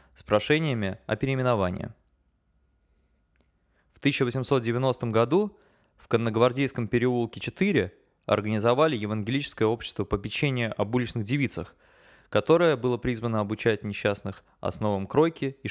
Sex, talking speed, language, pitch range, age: male, 105 wpm, Russian, 105-135 Hz, 20-39